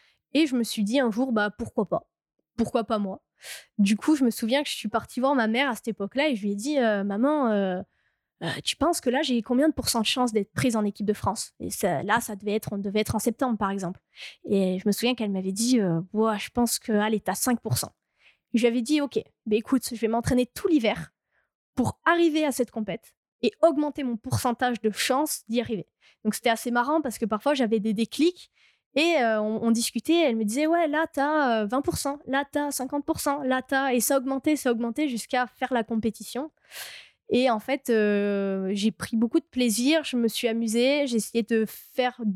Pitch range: 215-270 Hz